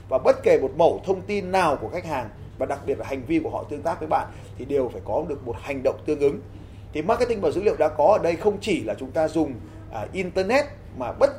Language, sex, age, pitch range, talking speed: Vietnamese, male, 30-49, 135-220 Hz, 270 wpm